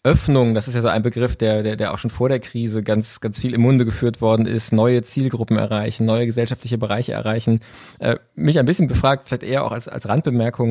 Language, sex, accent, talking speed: German, male, German, 230 wpm